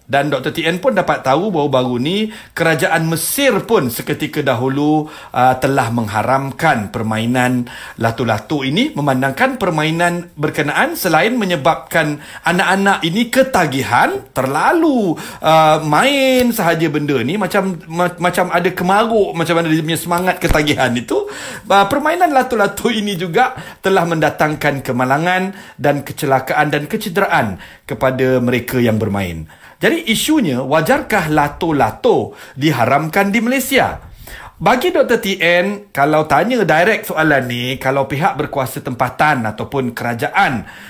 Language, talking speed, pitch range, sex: English, 120 wpm, 130-185 Hz, male